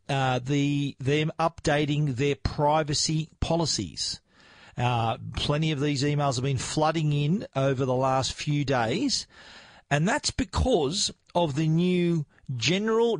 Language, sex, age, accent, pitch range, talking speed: English, male, 40-59, Australian, 130-160 Hz, 125 wpm